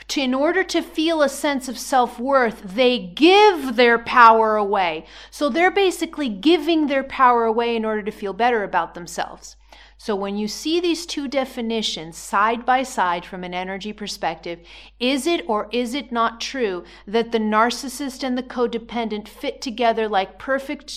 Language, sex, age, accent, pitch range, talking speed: English, female, 40-59, American, 205-275 Hz, 165 wpm